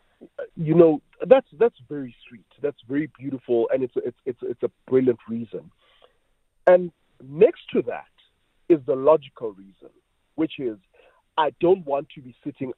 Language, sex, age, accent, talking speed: English, male, 50-69, South African, 160 wpm